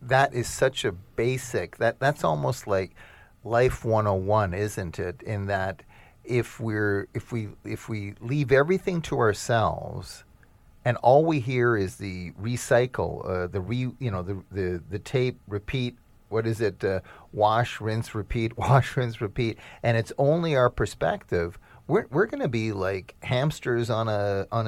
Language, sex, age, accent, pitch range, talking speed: English, male, 40-59, American, 100-125 Hz, 165 wpm